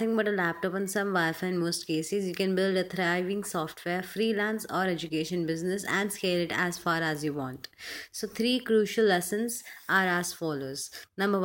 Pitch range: 170-200 Hz